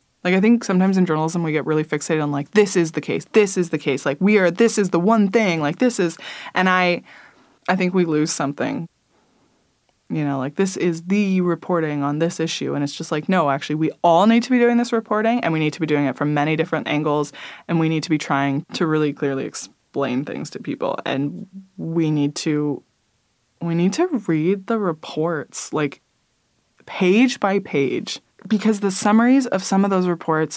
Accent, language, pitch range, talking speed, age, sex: American, English, 155-190 Hz, 205 wpm, 20-39, female